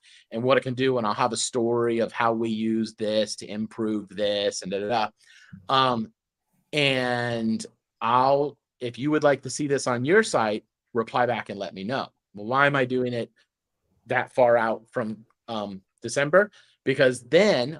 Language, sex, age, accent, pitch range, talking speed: English, male, 30-49, American, 115-150 Hz, 180 wpm